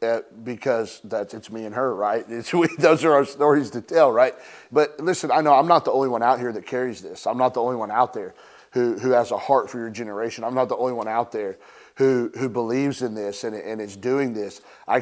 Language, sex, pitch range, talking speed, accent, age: English, male, 110-135 Hz, 255 wpm, American, 30-49